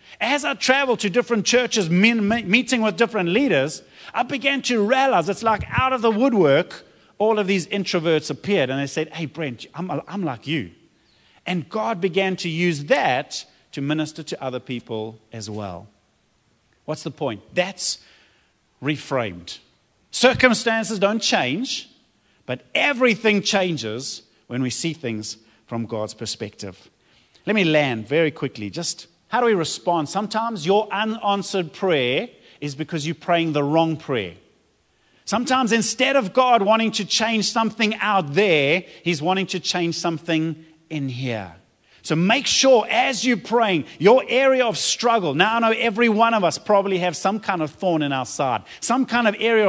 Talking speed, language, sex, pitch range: 160 wpm, English, male, 155-225 Hz